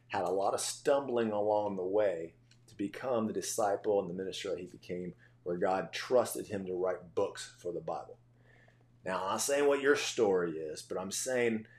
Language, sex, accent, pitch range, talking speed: English, male, American, 100-120 Hz, 200 wpm